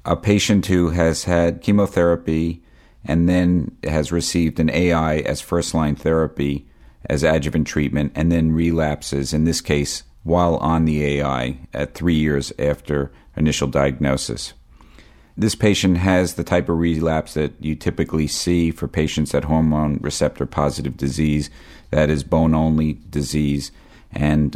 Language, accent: English, American